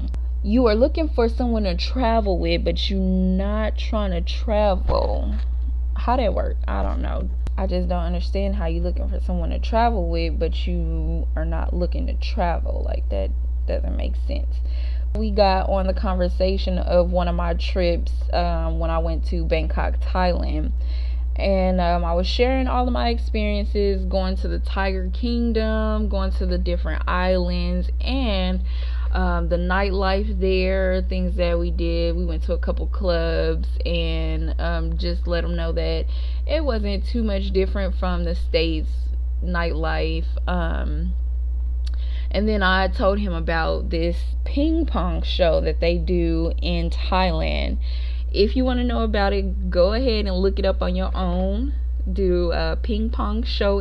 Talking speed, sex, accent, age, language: 165 wpm, female, American, 20-39, English